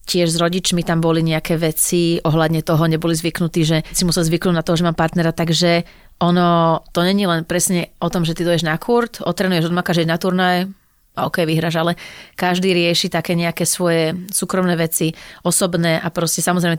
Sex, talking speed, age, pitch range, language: female, 190 wpm, 30-49, 165-180 Hz, Slovak